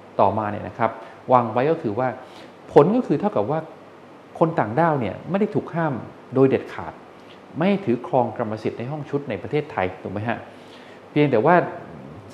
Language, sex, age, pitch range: Thai, male, 20-39, 110-145 Hz